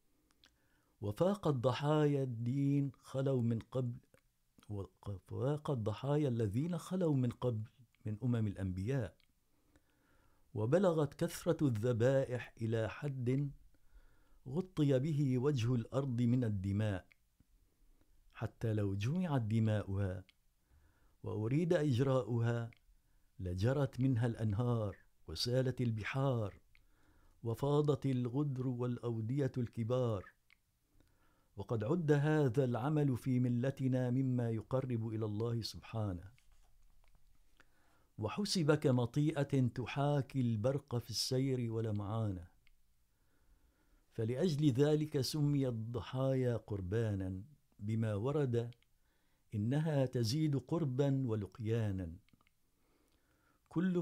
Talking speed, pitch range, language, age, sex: 80 wpm, 110-140 Hz, Urdu, 50-69, male